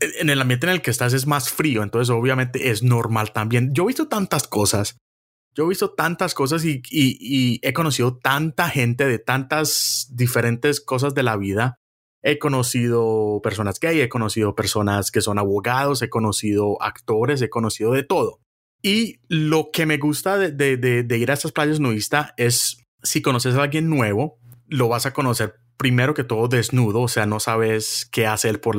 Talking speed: 190 wpm